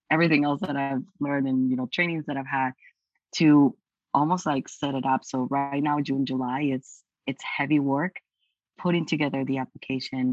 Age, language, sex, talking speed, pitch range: 30-49, English, female, 180 wpm, 130-155 Hz